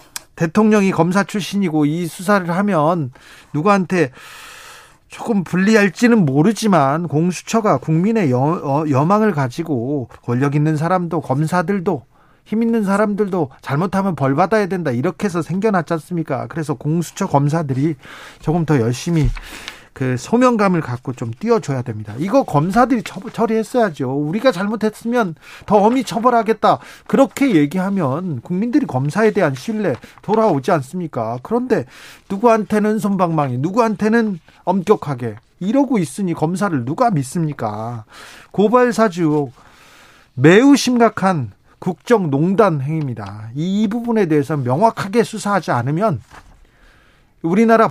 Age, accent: 40-59, native